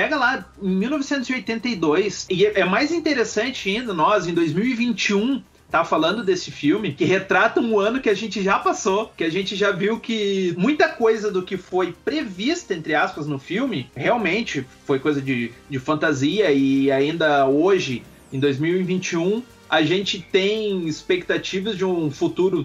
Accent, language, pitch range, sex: Brazilian, Portuguese, 155-220 Hz, male